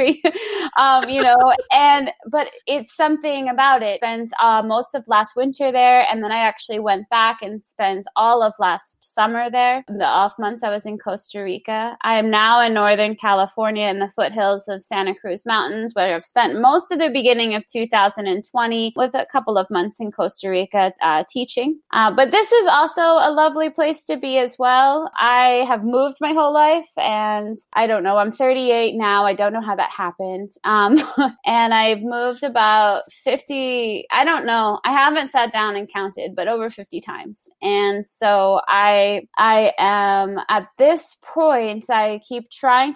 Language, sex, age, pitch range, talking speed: English, female, 20-39, 205-265 Hz, 185 wpm